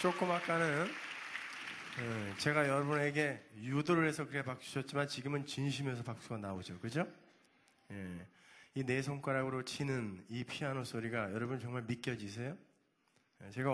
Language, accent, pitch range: Korean, native, 120-170 Hz